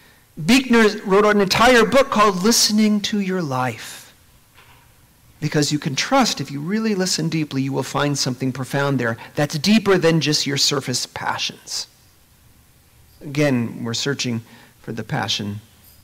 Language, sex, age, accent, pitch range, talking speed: English, male, 40-59, American, 140-210 Hz, 140 wpm